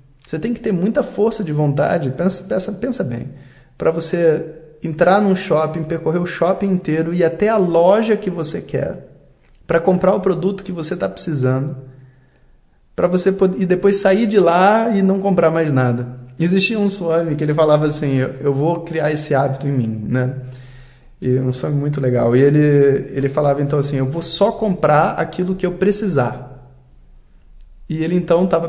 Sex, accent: male, Brazilian